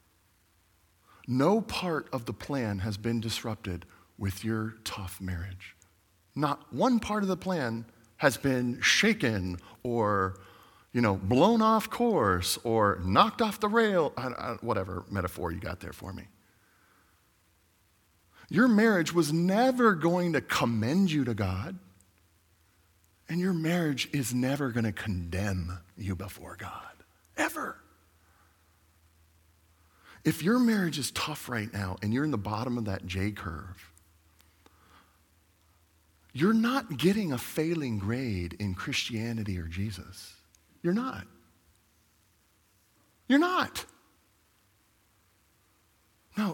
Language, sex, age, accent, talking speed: English, male, 40-59, American, 120 wpm